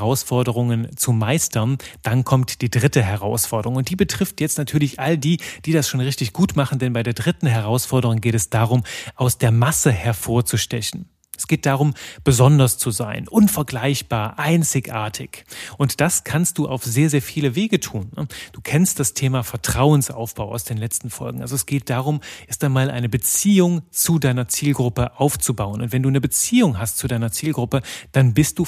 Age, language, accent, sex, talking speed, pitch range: 30-49, German, German, male, 180 wpm, 120-145 Hz